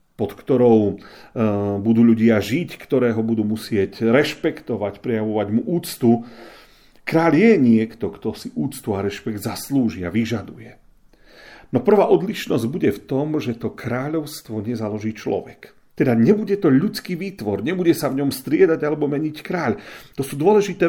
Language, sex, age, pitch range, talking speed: Slovak, male, 40-59, 115-145 Hz, 145 wpm